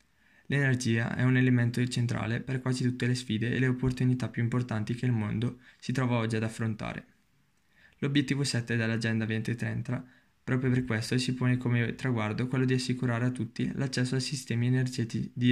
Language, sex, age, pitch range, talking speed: Italian, male, 20-39, 115-130 Hz, 165 wpm